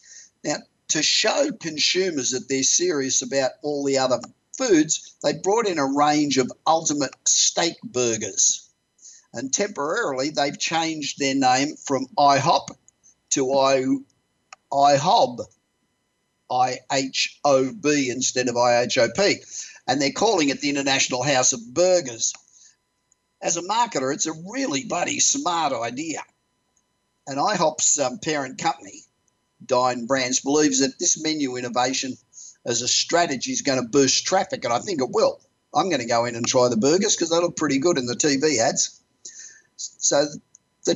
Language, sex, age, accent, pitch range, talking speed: English, male, 50-69, Australian, 130-160 Hz, 145 wpm